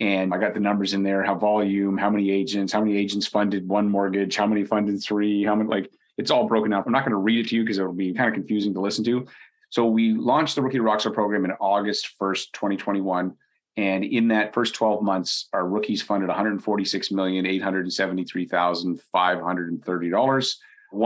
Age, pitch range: 30-49, 95-110 Hz